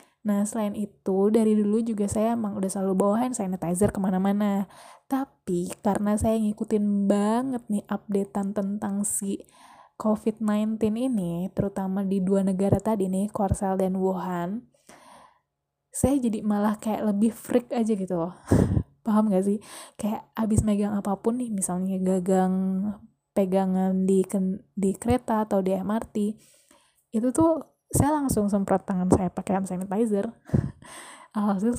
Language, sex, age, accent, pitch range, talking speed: Indonesian, female, 10-29, native, 195-215 Hz, 130 wpm